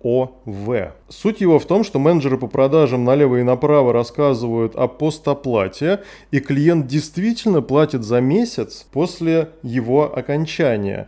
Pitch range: 120-155 Hz